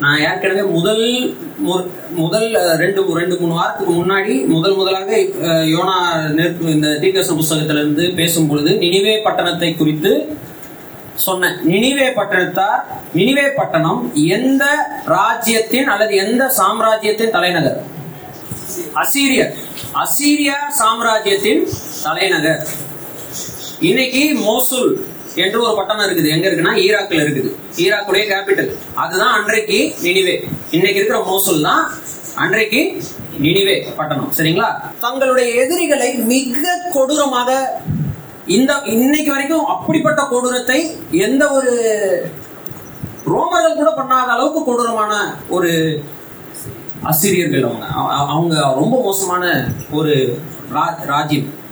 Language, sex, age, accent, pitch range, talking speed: Tamil, male, 30-49, native, 170-275 Hz, 80 wpm